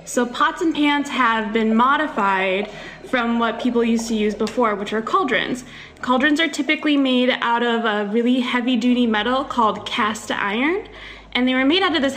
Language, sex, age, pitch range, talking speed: English, female, 10-29, 215-275 Hz, 180 wpm